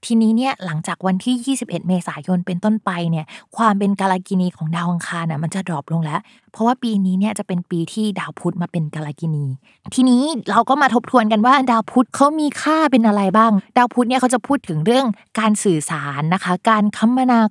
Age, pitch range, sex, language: 20-39, 175-230 Hz, female, Thai